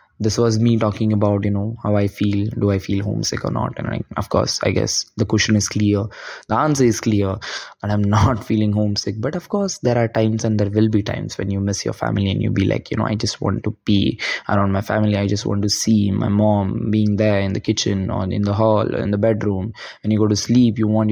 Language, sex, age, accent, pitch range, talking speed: English, male, 20-39, Indian, 100-115 Hz, 260 wpm